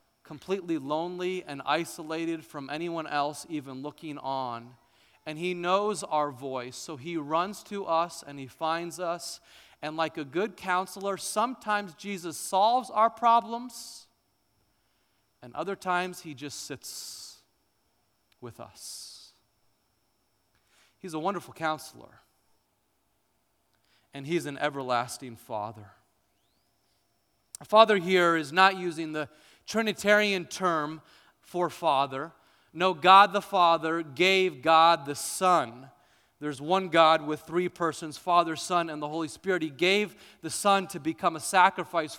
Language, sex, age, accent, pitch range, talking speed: English, male, 30-49, American, 150-195 Hz, 130 wpm